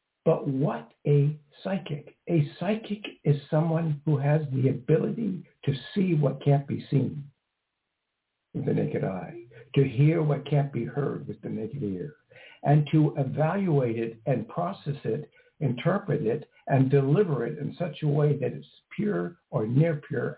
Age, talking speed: 60-79, 160 wpm